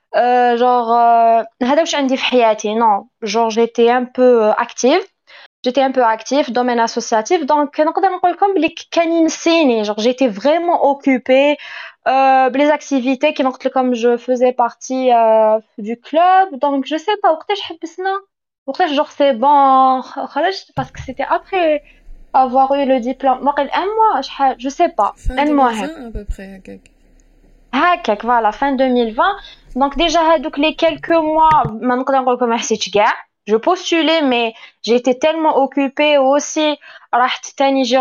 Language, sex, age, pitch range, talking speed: French, female, 20-39, 245-320 Hz, 130 wpm